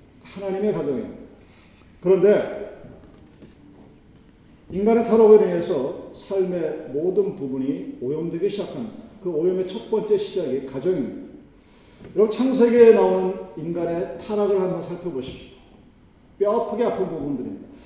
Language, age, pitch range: Korean, 40-59, 180-235 Hz